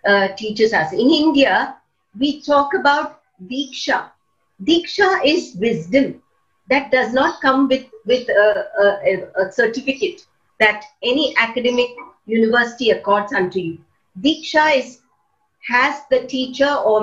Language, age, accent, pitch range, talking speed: English, 50-69, Indian, 210-285 Hz, 125 wpm